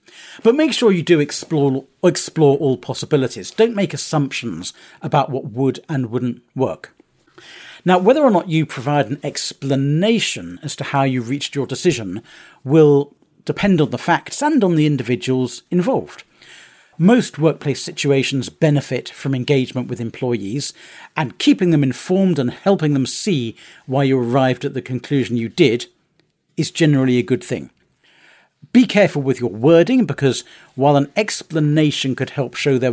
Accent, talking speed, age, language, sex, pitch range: British, 155 wpm, 40-59, English, male, 130-160 Hz